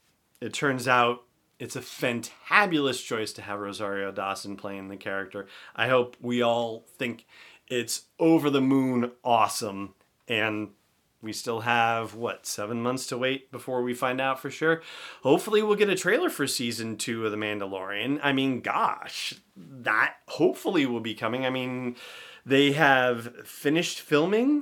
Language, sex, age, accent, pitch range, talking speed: English, male, 30-49, American, 110-150 Hz, 150 wpm